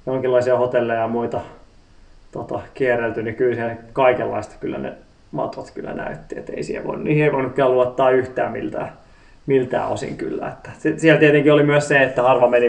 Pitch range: 120-140 Hz